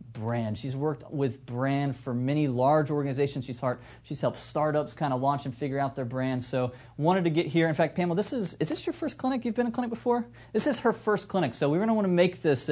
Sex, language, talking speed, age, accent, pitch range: male, English, 265 wpm, 30-49, American, 125-160 Hz